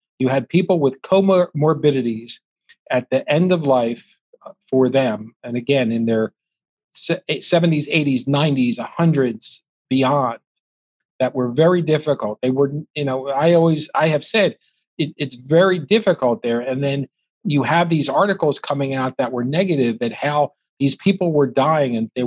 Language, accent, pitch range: English, American, 130-160 Hz